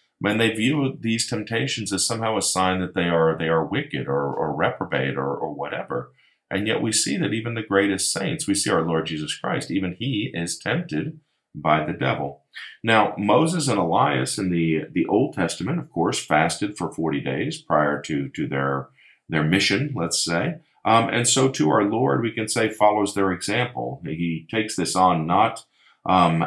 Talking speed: 190 wpm